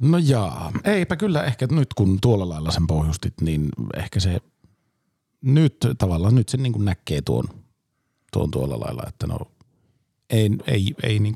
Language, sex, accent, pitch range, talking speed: Finnish, male, native, 95-125 Hz, 160 wpm